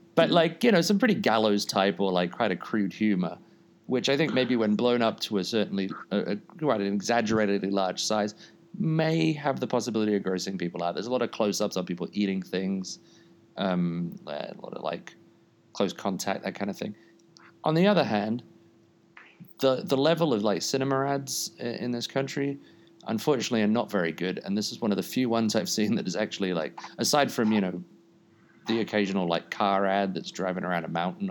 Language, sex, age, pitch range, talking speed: English, male, 30-49, 95-130 Hz, 205 wpm